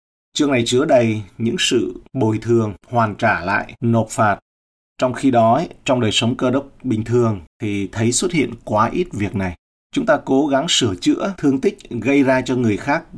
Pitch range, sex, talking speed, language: 100-120 Hz, male, 200 wpm, Vietnamese